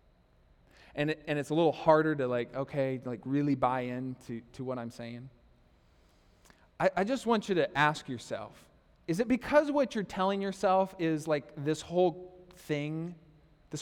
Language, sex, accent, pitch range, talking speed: English, male, American, 135-200 Hz, 175 wpm